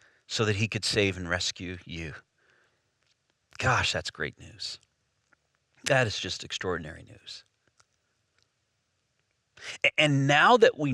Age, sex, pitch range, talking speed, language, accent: 40-59, male, 110-150 Hz, 115 wpm, English, American